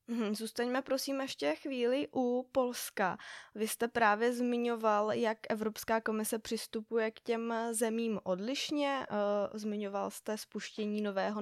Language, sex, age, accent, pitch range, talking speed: Czech, female, 20-39, native, 195-220 Hz, 115 wpm